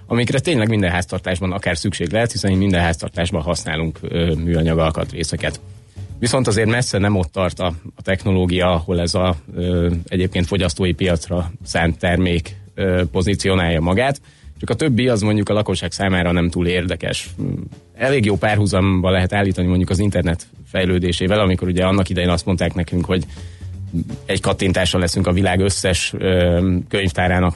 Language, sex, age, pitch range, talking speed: Hungarian, male, 30-49, 85-100 Hz, 150 wpm